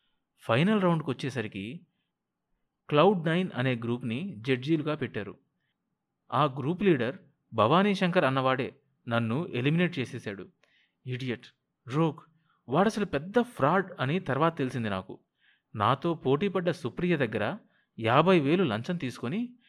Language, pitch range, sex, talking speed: Telugu, 120-175 Hz, male, 105 wpm